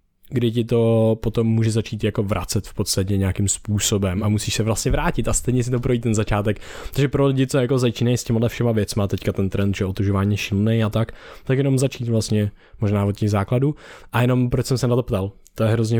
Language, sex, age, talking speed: Czech, male, 20-39, 235 wpm